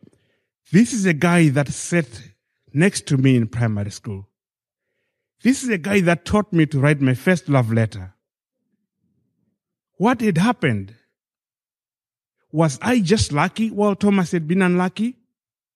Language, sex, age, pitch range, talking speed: English, male, 30-49, 120-185 Hz, 140 wpm